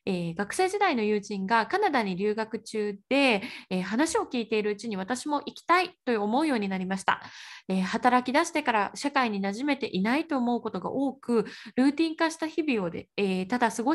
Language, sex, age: Japanese, female, 20-39